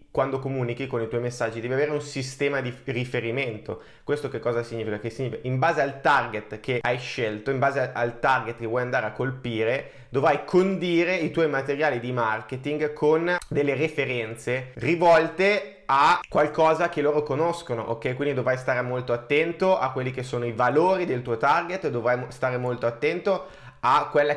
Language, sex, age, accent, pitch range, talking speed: Italian, male, 20-39, native, 115-145 Hz, 170 wpm